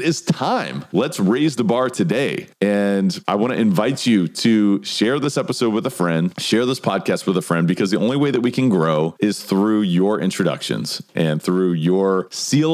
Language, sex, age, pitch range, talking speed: English, male, 40-59, 85-120 Hz, 200 wpm